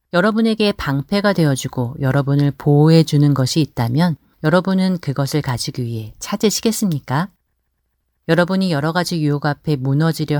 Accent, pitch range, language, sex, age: native, 130-170 Hz, Korean, female, 40-59